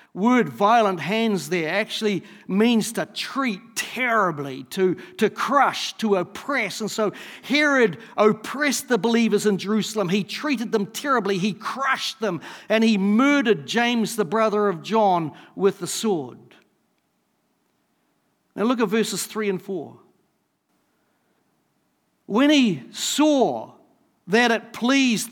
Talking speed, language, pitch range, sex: 125 wpm, English, 195-240 Hz, male